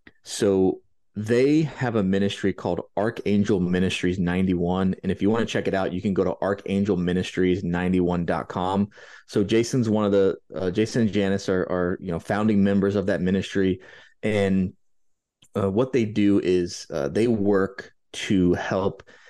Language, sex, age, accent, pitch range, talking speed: English, male, 30-49, American, 90-105 Hz, 160 wpm